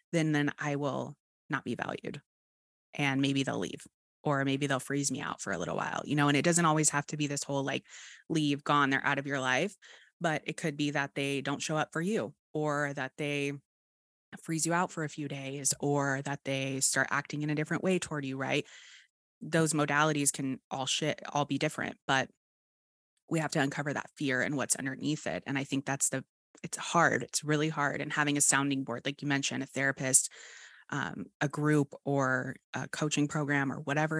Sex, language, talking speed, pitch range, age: female, English, 210 wpm, 135-155 Hz, 20-39